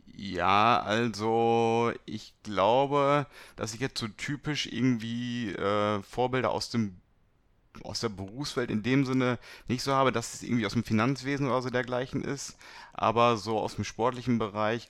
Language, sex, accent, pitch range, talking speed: German, male, German, 110-130 Hz, 155 wpm